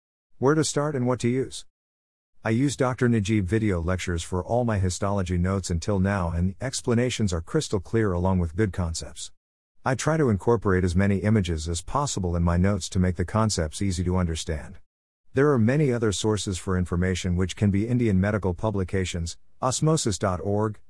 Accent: American